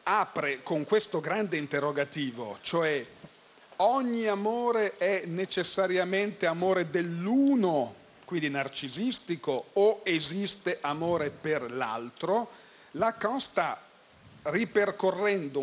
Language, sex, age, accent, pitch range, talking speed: Italian, male, 40-59, native, 150-200 Hz, 85 wpm